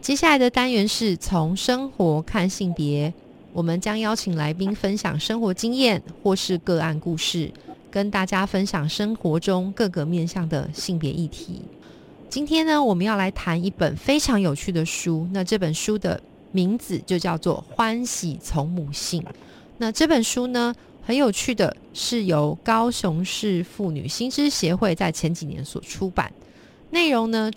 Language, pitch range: Chinese, 170-220 Hz